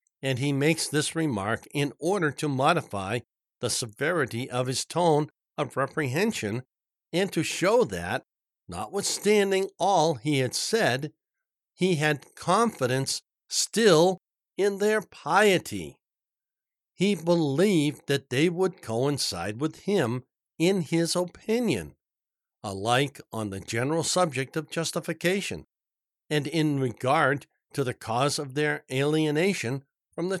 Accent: American